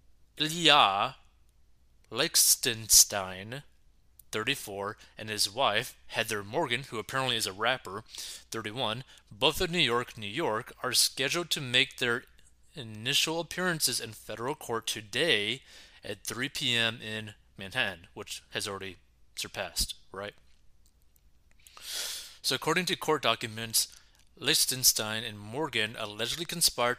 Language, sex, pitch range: English, male, 105-140 Hz